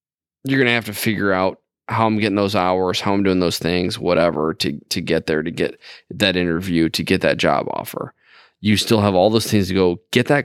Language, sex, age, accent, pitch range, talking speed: English, male, 20-39, American, 85-100 Hz, 235 wpm